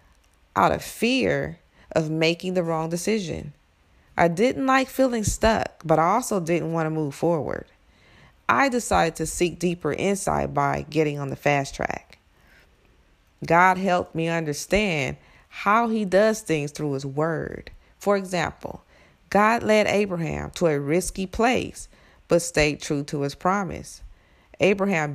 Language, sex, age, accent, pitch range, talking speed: English, female, 40-59, American, 145-205 Hz, 145 wpm